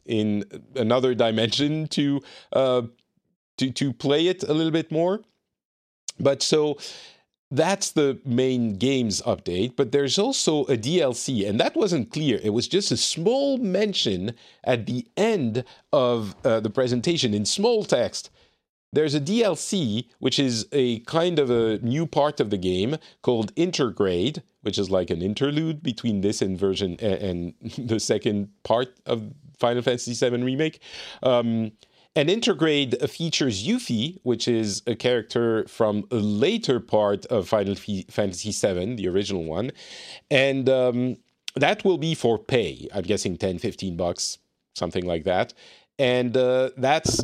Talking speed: 150 wpm